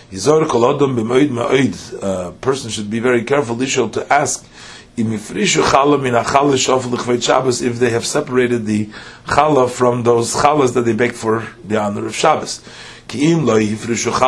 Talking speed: 120 wpm